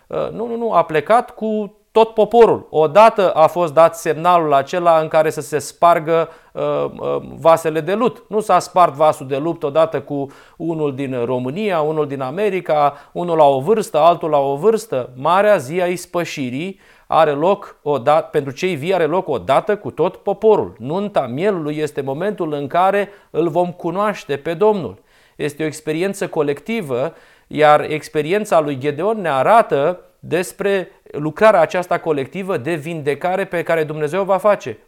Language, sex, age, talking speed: Romanian, male, 40-59, 165 wpm